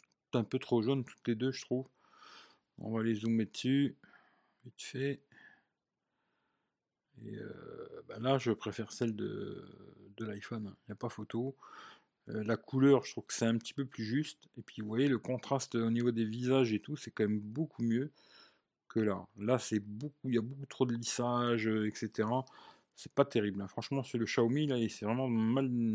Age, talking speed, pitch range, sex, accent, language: 40-59, 200 wpm, 105-130 Hz, male, French, French